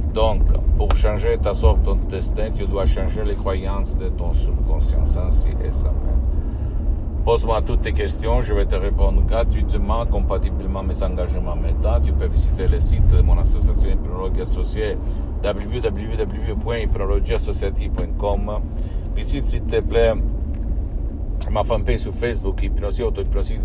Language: Italian